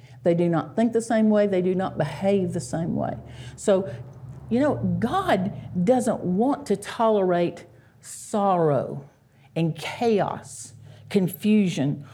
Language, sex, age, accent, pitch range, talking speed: English, female, 50-69, American, 155-220 Hz, 130 wpm